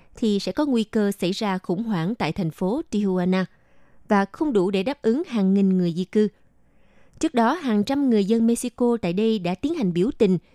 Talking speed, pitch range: 215 wpm, 185-230 Hz